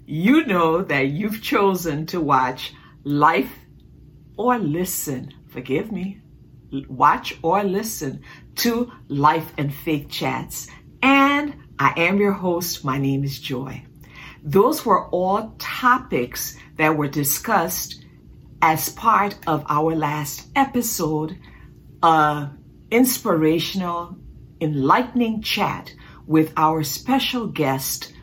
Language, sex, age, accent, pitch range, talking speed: English, female, 60-79, American, 145-195 Hz, 105 wpm